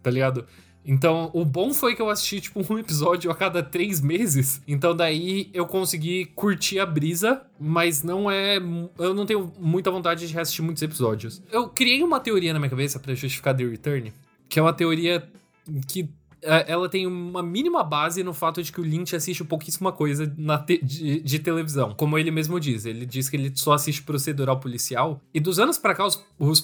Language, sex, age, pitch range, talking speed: Portuguese, male, 20-39, 145-180 Hz, 195 wpm